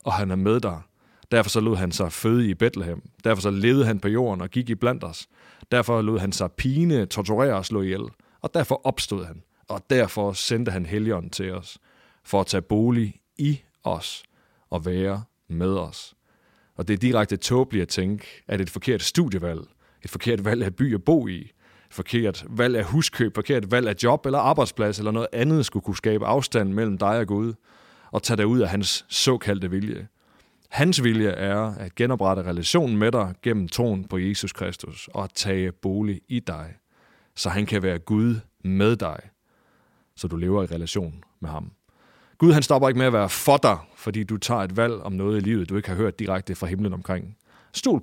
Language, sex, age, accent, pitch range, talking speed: English, male, 30-49, Danish, 95-120 Hz, 205 wpm